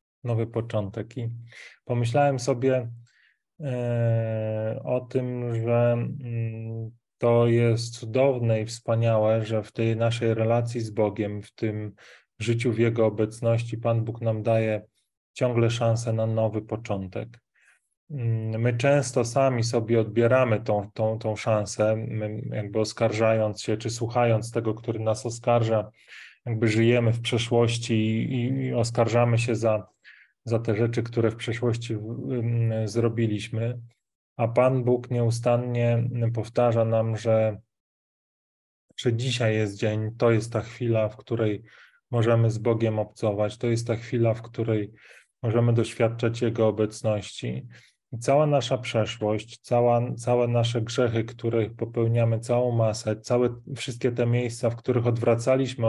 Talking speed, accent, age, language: 125 wpm, native, 20-39, Polish